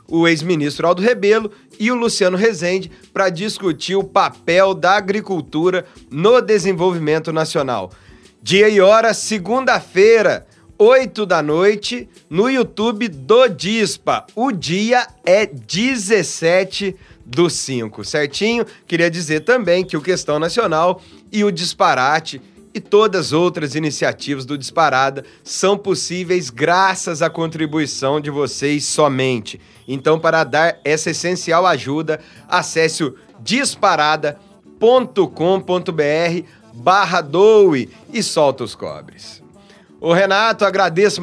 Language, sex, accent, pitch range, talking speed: Portuguese, male, Brazilian, 155-200 Hz, 110 wpm